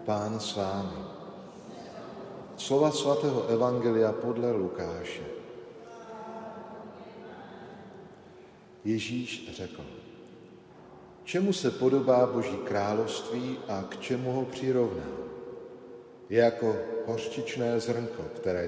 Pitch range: 100-130 Hz